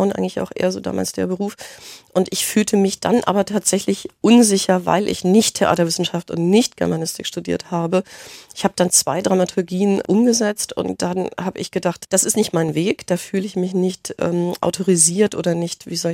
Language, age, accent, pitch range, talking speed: German, 40-59, German, 170-195 Hz, 190 wpm